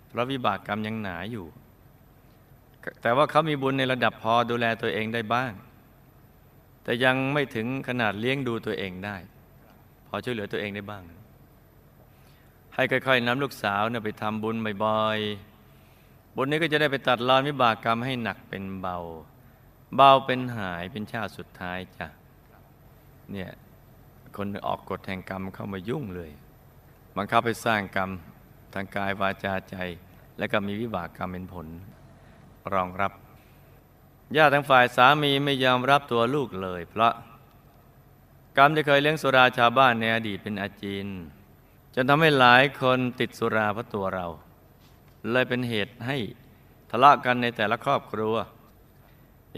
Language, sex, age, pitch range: Thai, male, 20-39, 100-130 Hz